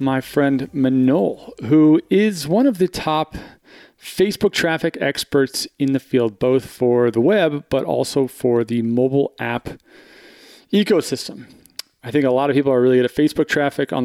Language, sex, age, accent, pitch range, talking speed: English, male, 40-59, American, 125-155 Hz, 165 wpm